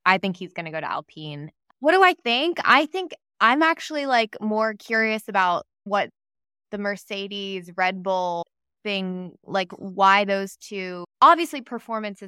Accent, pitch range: American, 180-225 Hz